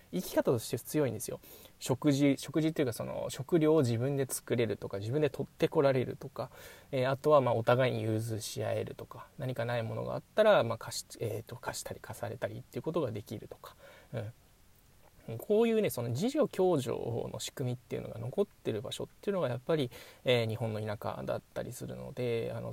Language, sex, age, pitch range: Japanese, male, 20-39, 120-160 Hz